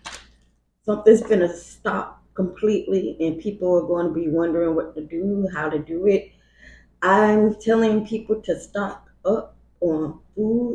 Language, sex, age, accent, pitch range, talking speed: English, female, 20-39, American, 155-210 Hz, 140 wpm